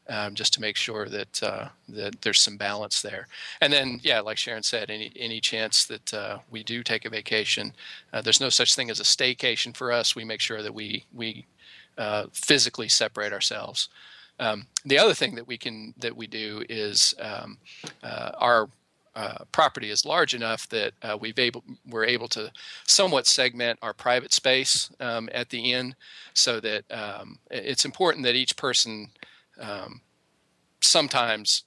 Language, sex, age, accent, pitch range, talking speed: English, male, 40-59, American, 105-120 Hz, 175 wpm